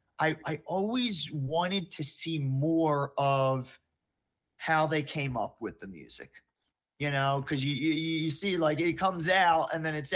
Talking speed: 170 wpm